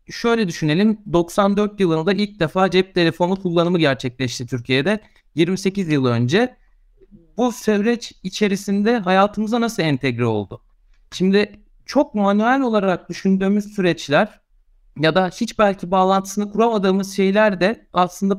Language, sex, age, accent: Turkish, male, 60-79, native